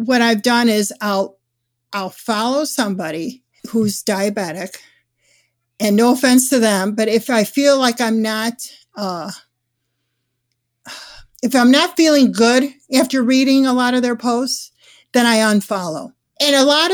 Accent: American